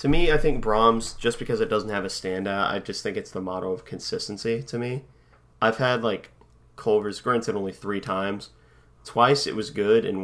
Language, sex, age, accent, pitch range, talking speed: English, male, 30-49, American, 100-130 Hz, 205 wpm